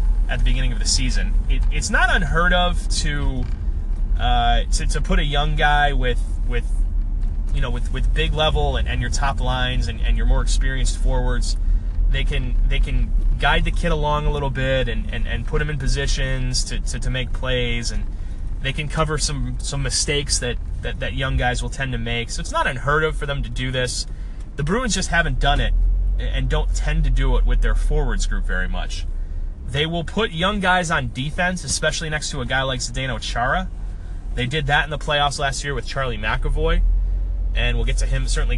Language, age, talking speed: English, 30-49, 215 wpm